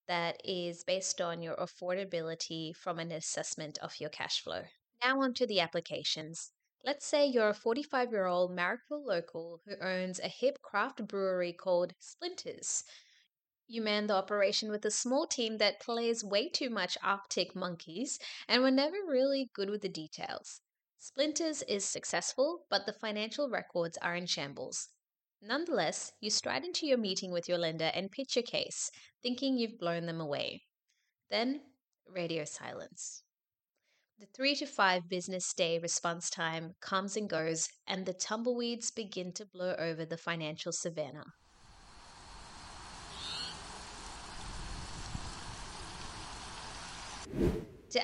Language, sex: English, female